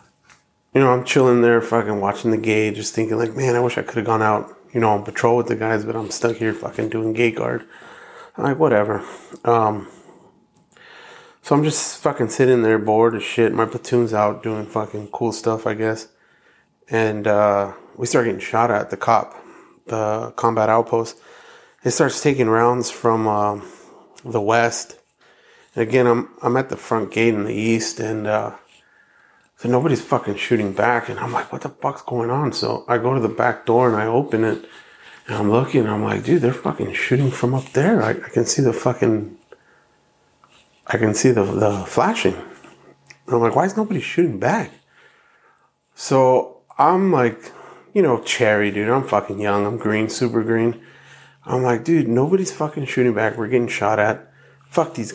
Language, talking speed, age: English, 185 wpm, 30-49